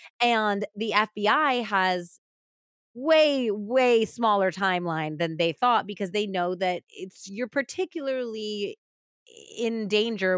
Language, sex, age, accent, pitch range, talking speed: English, female, 20-39, American, 170-225 Hz, 115 wpm